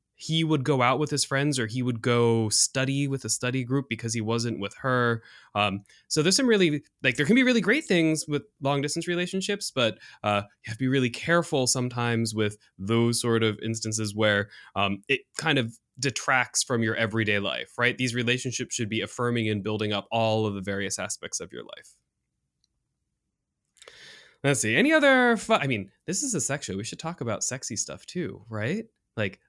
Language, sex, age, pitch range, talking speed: English, male, 20-39, 110-145 Hz, 200 wpm